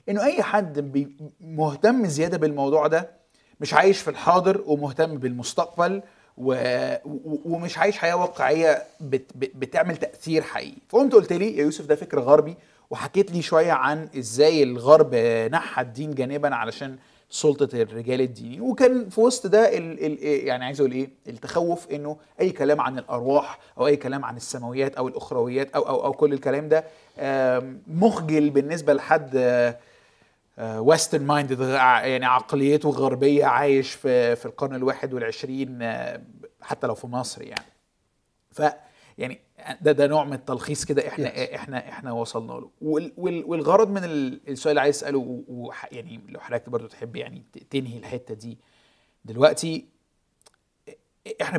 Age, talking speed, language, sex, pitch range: 20-39, 140 wpm, Arabic, male, 130-160 Hz